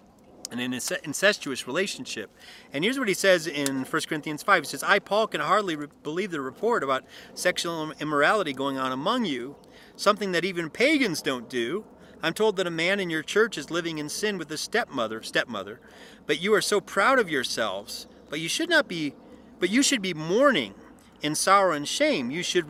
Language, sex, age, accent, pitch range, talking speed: English, male, 40-59, American, 150-220 Hz, 195 wpm